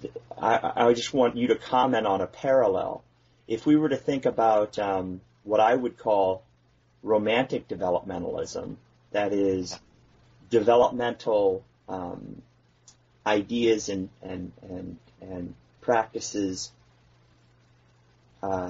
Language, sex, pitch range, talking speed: English, male, 100-130 Hz, 110 wpm